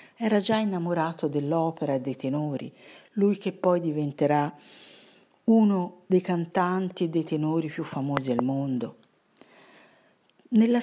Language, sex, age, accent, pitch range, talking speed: Italian, female, 50-69, native, 140-195 Hz, 120 wpm